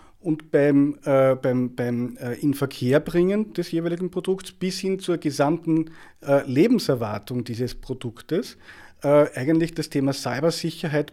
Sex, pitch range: male, 130-165 Hz